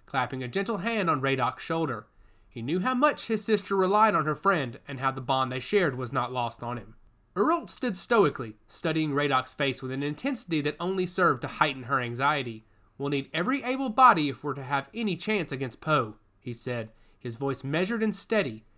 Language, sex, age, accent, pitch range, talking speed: English, male, 30-49, American, 125-195 Hz, 205 wpm